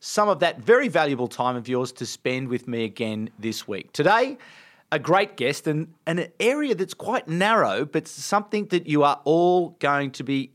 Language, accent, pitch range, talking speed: English, Australian, 125-185 Hz, 200 wpm